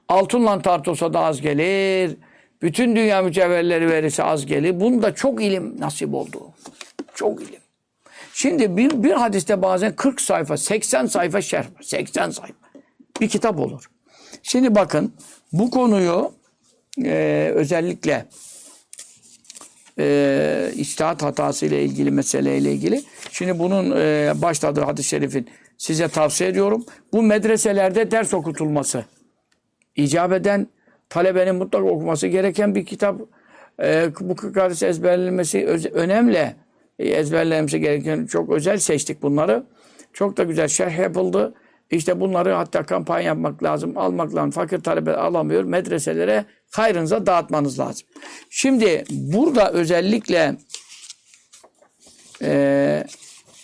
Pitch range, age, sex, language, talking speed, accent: 155-210 Hz, 60-79, male, Turkish, 115 wpm, native